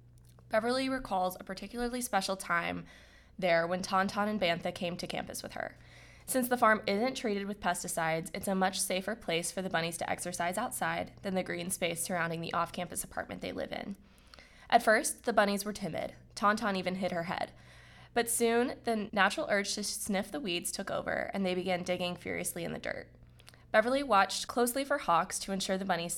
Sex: female